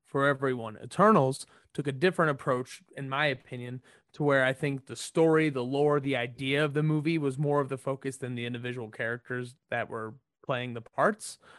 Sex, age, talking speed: male, 30-49, 190 wpm